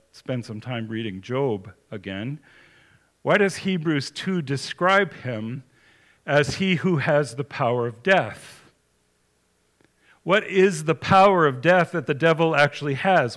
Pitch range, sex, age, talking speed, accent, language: 115-150 Hz, male, 50-69, 140 wpm, American, English